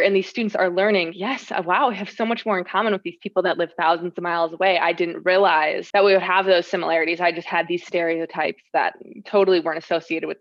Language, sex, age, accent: English, female, 20-39, American